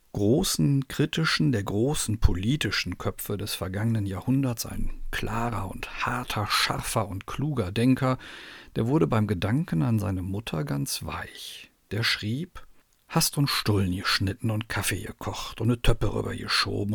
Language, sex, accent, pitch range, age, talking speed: German, male, German, 105-130 Hz, 50-69, 140 wpm